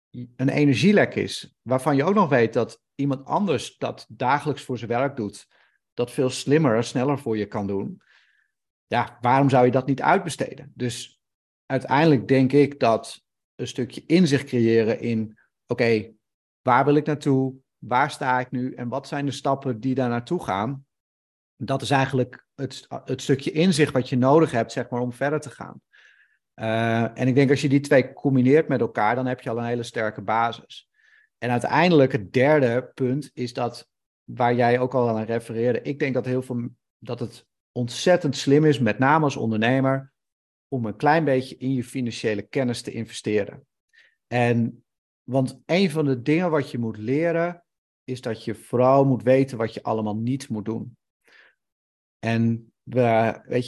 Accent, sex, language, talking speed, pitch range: Dutch, male, Dutch, 180 wpm, 115-140 Hz